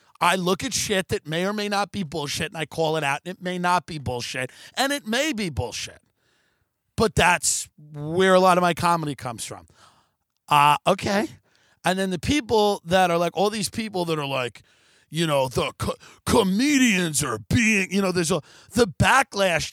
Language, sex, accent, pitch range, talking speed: English, male, American, 165-235 Hz, 195 wpm